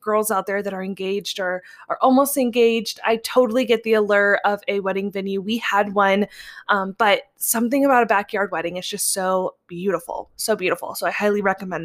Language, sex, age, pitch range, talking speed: English, female, 20-39, 195-235 Hz, 195 wpm